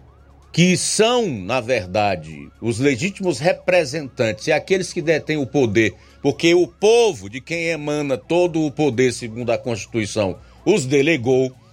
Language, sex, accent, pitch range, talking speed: Portuguese, male, Brazilian, 90-145 Hz, 140 wpm